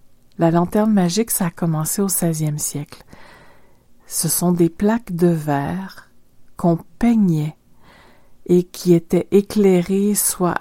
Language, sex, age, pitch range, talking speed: French, female, 50-69, 155-185 Hz, 125 wpm